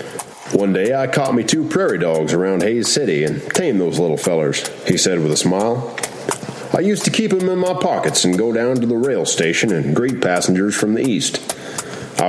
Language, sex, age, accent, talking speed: English, male, 40-59, American, 210 wpm